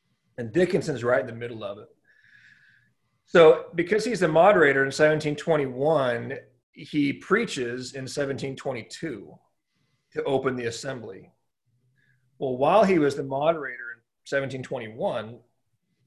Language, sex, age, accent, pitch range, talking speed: English, male, 40-59, American, 125-160 Hz, 115 wpm